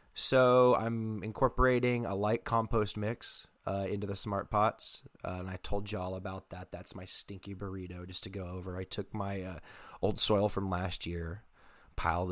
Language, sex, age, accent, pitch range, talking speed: English, male, 20-39, American, 90-105 Hz, 180 wpm